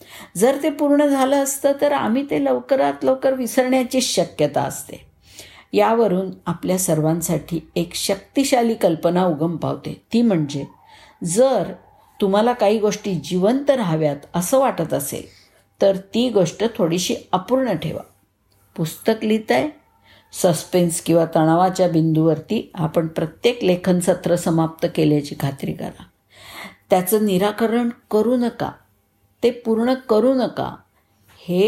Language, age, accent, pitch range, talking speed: Marathi, 50-69, native, 160-235 Hz, 115 wpm